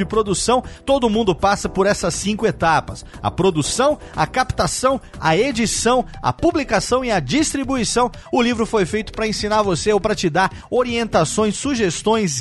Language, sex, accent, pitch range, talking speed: Portuguese, male, Brazilian, 165-225 Hz, 155 wpm